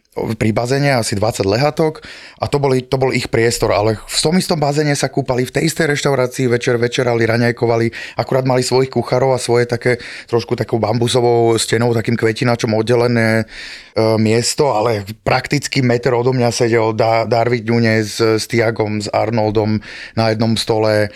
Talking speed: 160 wpm